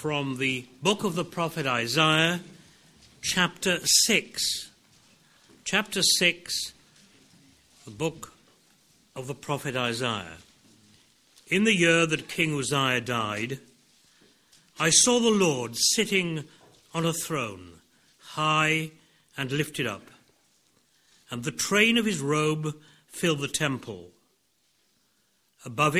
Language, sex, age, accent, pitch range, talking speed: English, male, 60-79, British, 125-175 Hz, 105 wpm